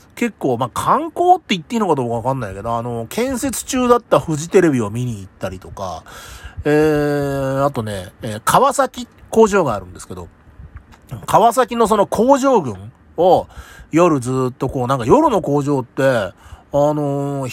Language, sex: Japanese, male